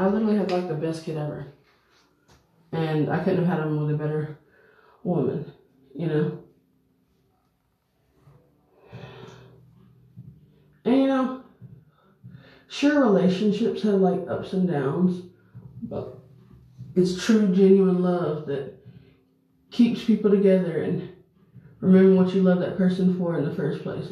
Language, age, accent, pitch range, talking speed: English, 20-39, American, 155-190 Hz, 125 wpm